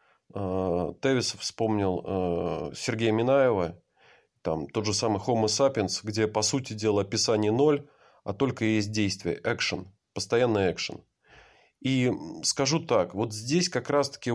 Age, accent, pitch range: 20-39, native, 105-140 Hz